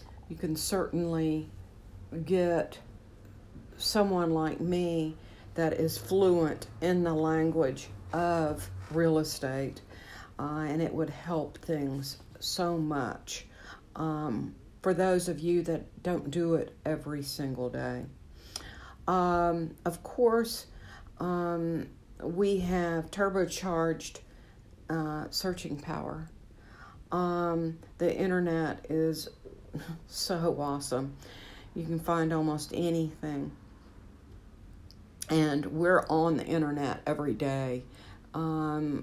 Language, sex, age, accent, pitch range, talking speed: English, female, 60-79, American, 125-170 Hz, 100 wpm